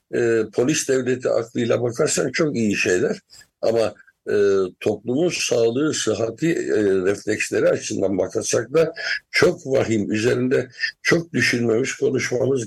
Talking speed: 115 wpm